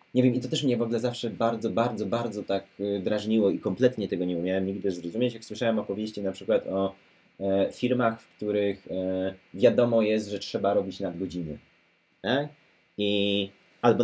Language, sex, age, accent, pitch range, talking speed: Polish, male, 20-39, native, 95-130 Hz, 160 wpm